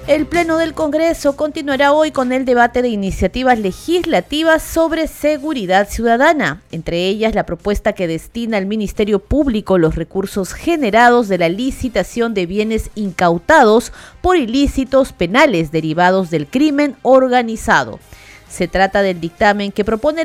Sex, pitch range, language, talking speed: female, 175-260 Hz, Spanish, 135 wpm